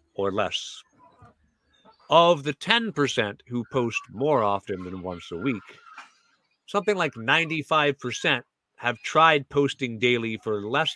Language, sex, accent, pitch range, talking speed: English, male, American, 105-145 Hz, 120 wpm